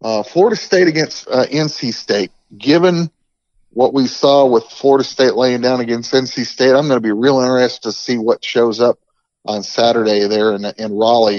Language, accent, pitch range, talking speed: English, American, 110-130 Hz, 190 wpm